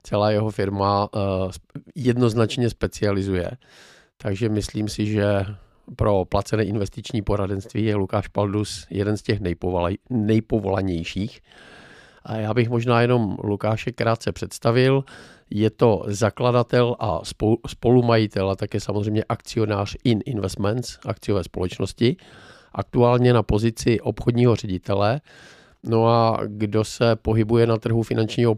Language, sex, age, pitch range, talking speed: Czech, male, 50-69, 100-115 Hz, 120 wpm